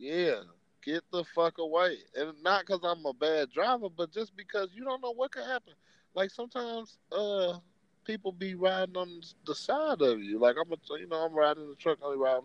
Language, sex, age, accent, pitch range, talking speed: English, male, 30-49, American, 115-180 Hz, 205 wpm